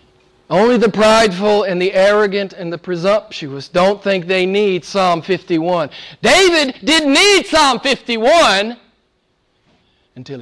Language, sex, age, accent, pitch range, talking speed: English, male, 40-59, American, 120-165 Hz, 120 wpm